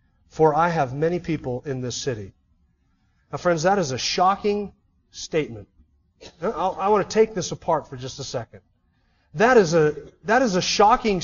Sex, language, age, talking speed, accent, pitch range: male, English, 40-59, 160 wpm, American, 160-220 Hz